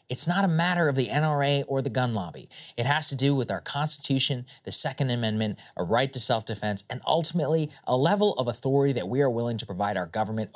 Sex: male